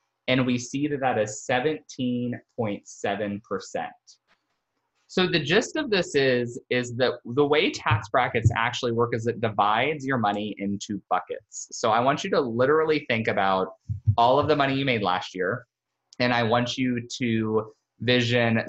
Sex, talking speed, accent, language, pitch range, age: male, 160 wpm, American, English, 110-135 Hz, 20-39